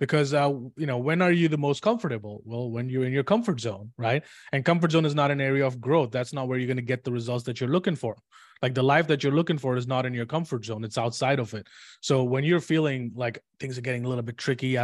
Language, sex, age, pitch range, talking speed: English, male, 20-39, 125-150 Hz, 285 wpm